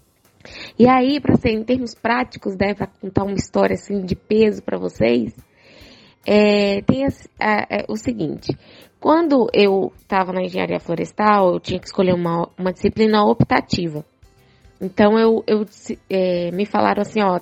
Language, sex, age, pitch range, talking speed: Portuguese, female, 20-39, 195-255 Hz, 155 wpm